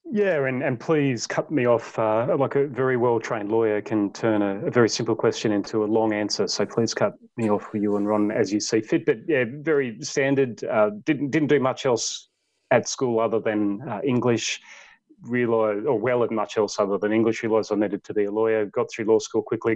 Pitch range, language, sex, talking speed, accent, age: 105-135 Hz, English, male, 220 wpm, Australian, 30-49